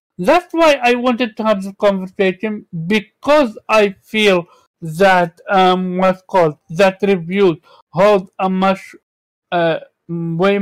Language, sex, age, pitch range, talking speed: English, male, 60-79, 170-210 Hz, 125 wpm